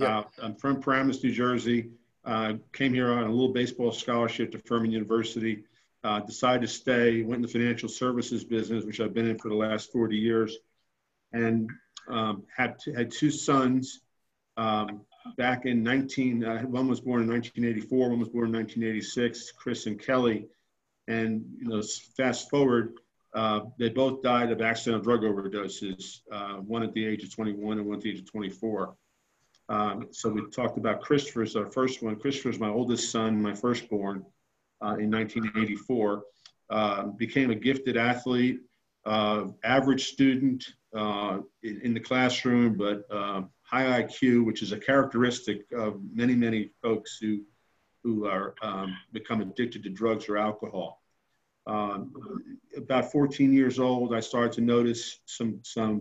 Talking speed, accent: 160 wpm, American